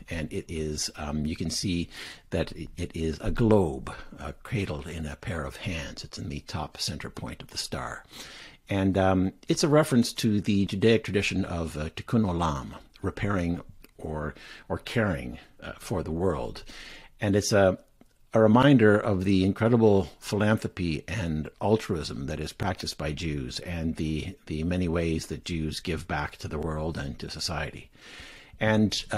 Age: 60-79